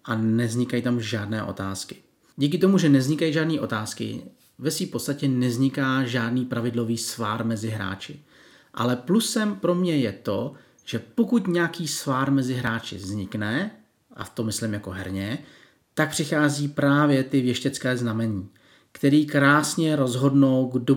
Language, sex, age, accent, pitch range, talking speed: Czech, male, 40-59, native, 115-150 Hz, 140 wpm